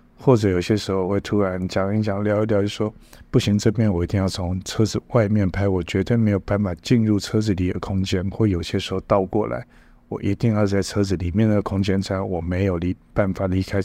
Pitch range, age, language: 95-110 Hz, 50-69, Chinese